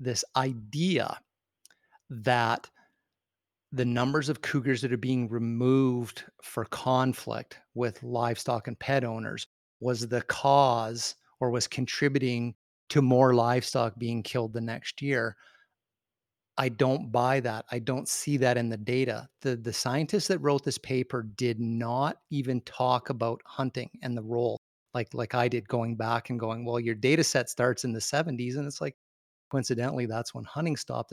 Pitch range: 120-135 Hz